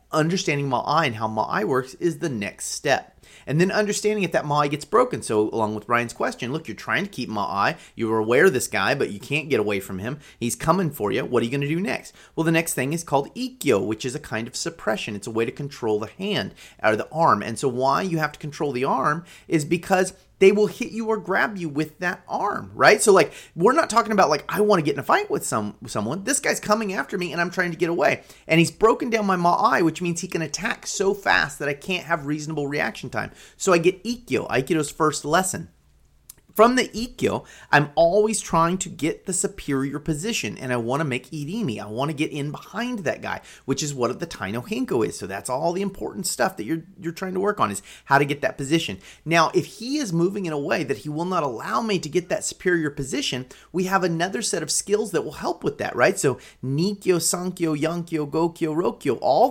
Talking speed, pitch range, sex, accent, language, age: 245 wpm, 140-190 Hz, male, American, English, 30-49